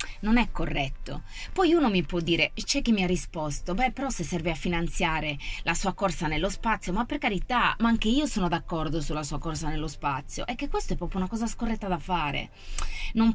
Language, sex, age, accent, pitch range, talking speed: Italian, female, 20-39, native, 150-210 Hz, 215 wpm